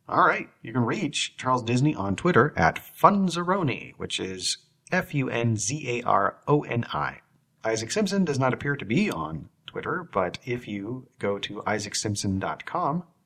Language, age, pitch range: English, 30-49, 100-140 Hz